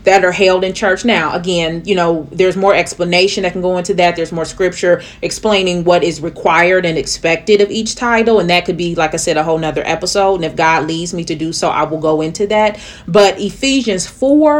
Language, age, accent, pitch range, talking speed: English, 30-49, American, 165-205 Hz, 230 wpm